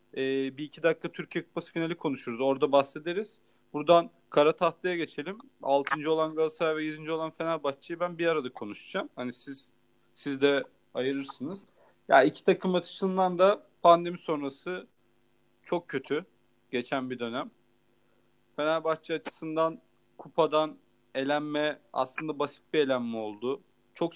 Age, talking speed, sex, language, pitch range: 40-59, 125 wpm, male, Turkish, 130-165 Hz